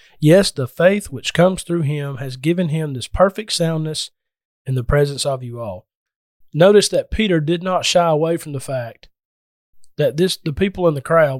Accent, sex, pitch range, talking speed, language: American, male, 140-180 Hz, 190 wpm, English